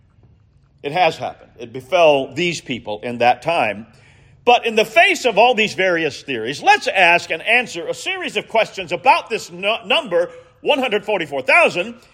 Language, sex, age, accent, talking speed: English, male, 50-69, American, 155 wpm